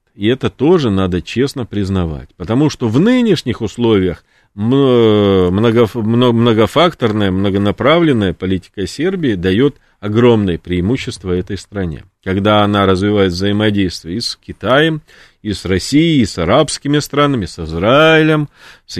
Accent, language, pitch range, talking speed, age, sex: native, Russian, 95-135 Hz, 115 wpm, 40-59, male